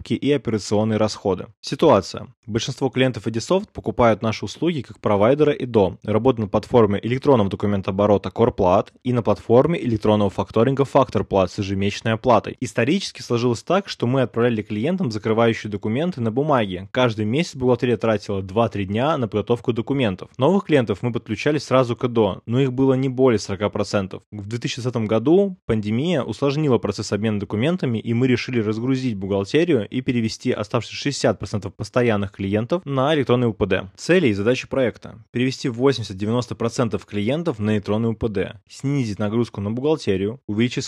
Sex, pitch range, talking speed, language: male, 105-130 Hz, 145 wpm, Russian